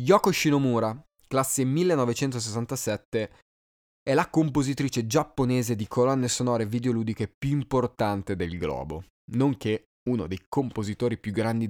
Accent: native